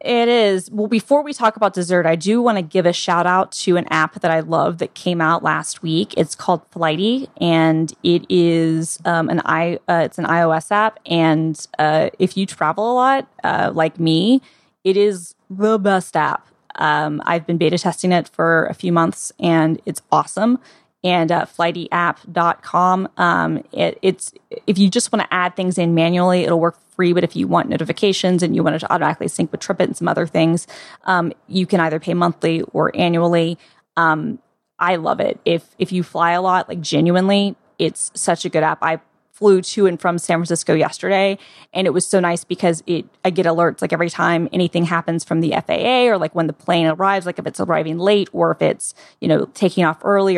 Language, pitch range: English, 165-190 Hz